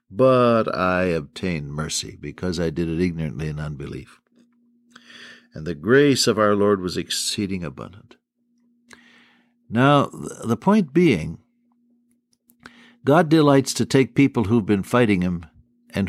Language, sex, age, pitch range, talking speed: English, male, 60-79, 100-150 Hz, 125 wpm